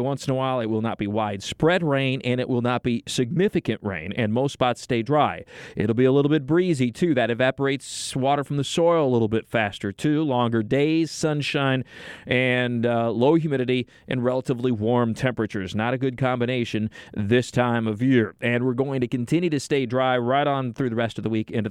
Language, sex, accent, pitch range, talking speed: English, male, American, 115-145 Hz, 210 wpm